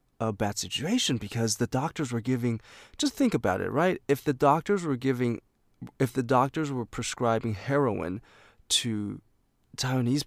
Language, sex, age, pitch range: Chinese, male, 20-39, 105-135 Hz